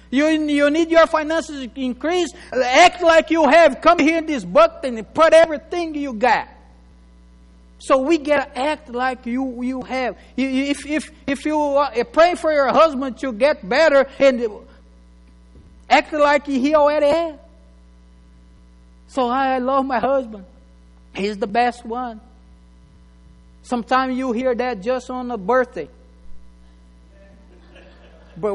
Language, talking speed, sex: English, 135 wpm, male